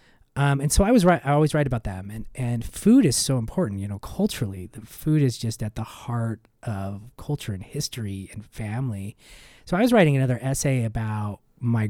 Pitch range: 105-135 Hz